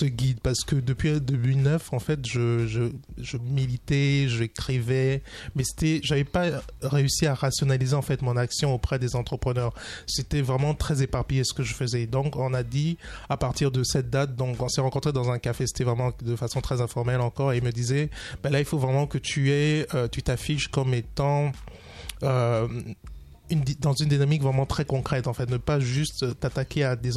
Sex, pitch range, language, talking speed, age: male, 125-140 Hz, French, 200 wpm, 20-39